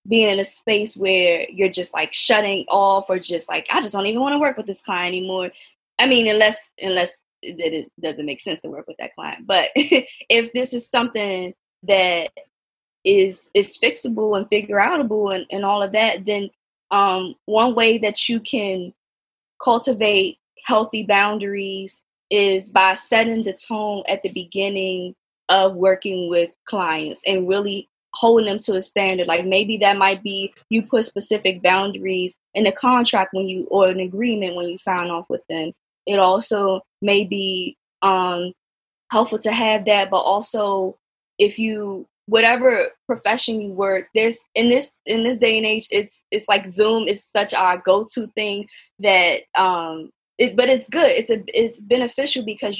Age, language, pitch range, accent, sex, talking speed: 20-39, English, 190-225 Hz, American, female, 170 wpm